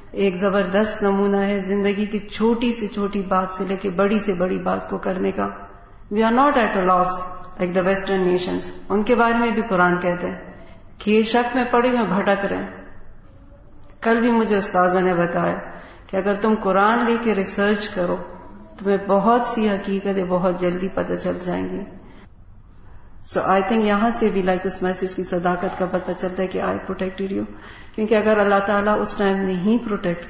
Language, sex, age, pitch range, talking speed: Urdu, female, 40-59, 180-210 Hz, 185 wpm